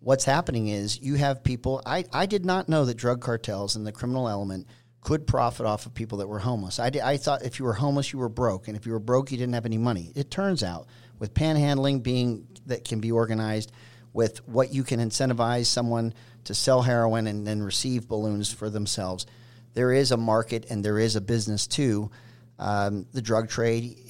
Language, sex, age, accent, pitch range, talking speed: English, male, 40-59, American, 110-125 Hz, 220 wpm